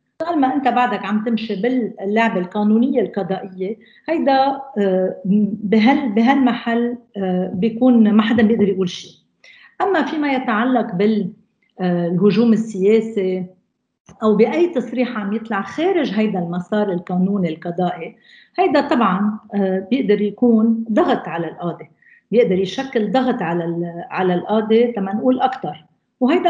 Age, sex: 50-69, female